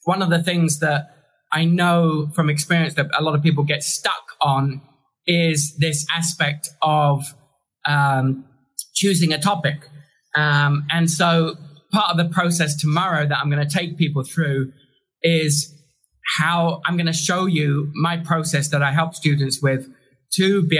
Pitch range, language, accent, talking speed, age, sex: 140-165 Hz, English, British, 160 wpm, 20-39, male